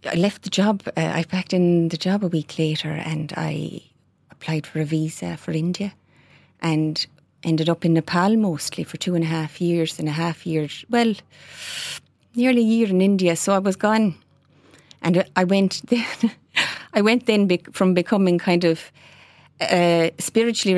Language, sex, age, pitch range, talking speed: English, female, 30-49, 160-200 Hz, 170 wpm